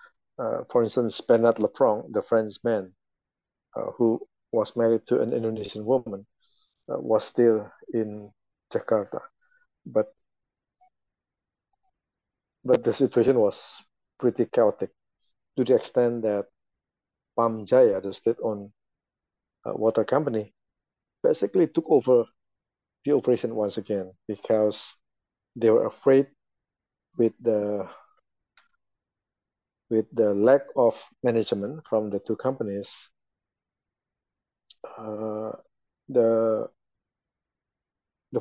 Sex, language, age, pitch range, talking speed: male, English, 50-69, 110-130 Hz, 100 wpm